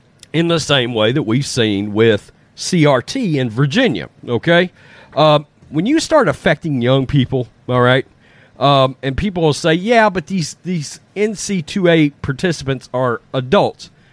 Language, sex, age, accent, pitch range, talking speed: English, male, 40-59, American, 145-220 Hz, 145 wpm